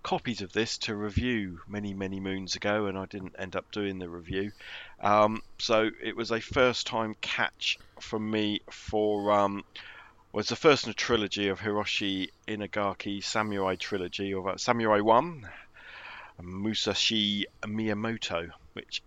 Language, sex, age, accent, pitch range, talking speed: English, male, 40-59, British, 95-110 Hz, 150 wpm